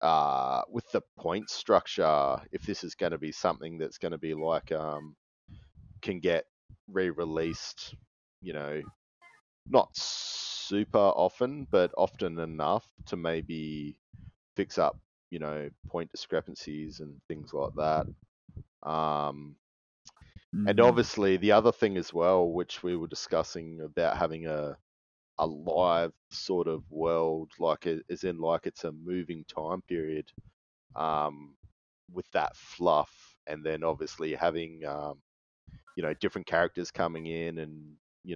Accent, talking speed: Australian, 135 wpm